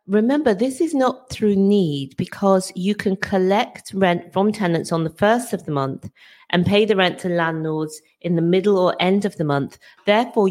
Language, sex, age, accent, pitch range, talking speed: English, female, 40-59, British, 160-200 Hz, 195 wpm